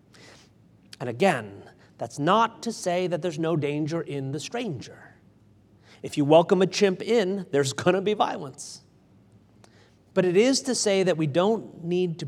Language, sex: English, male